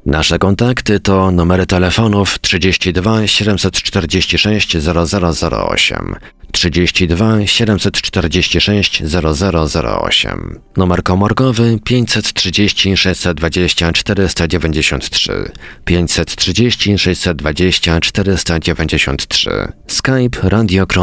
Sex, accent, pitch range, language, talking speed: male, native, 80-100 Hz, Polish, 55 wpm